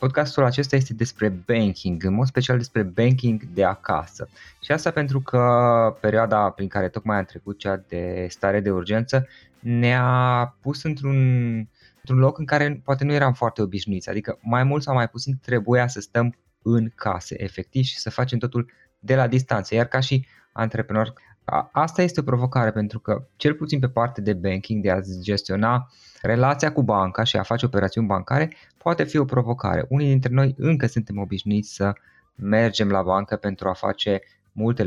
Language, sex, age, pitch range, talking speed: Romanian, male, 20-39, 105-130 Hz, 175 wpm